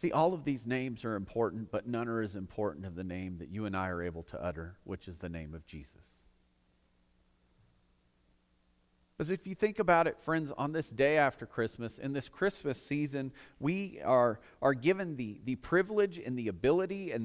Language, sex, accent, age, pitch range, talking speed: English, male, American, 40-59, 95-155 Hz, 195 wpm